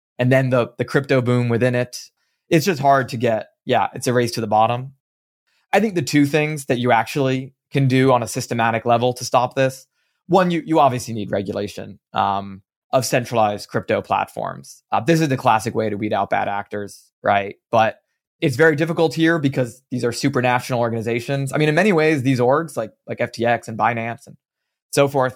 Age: 20-39